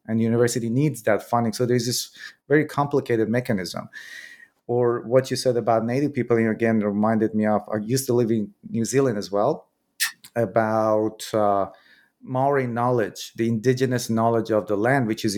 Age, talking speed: 30-49, 170 wpm